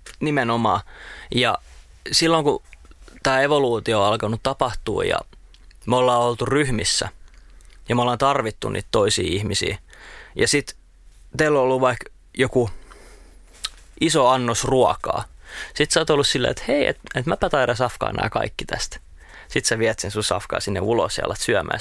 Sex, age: male, 20-39